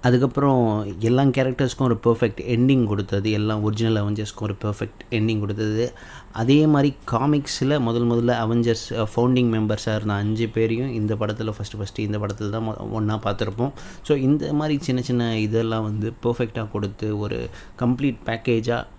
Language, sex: Tamil, male